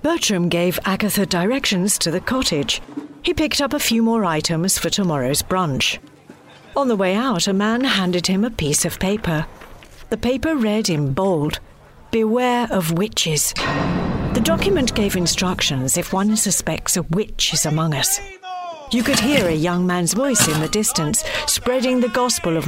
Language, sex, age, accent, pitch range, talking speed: English, female, 50-69, British, 170-230 Hz, 165 wpm